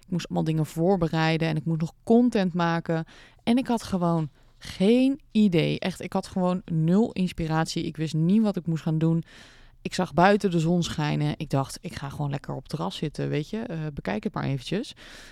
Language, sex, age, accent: Dutch, female, 20-39, Dutch